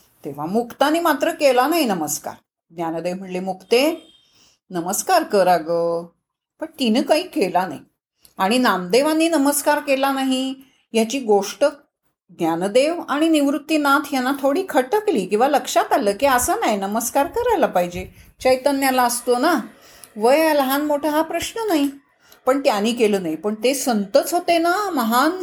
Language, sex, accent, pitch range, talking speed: Marathi, female, native, 190-295 Hz, 140 wpm